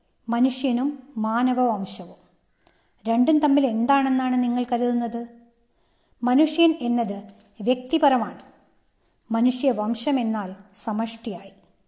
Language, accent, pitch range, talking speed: Malayalam, native, 215-260 Hz, 65 wpm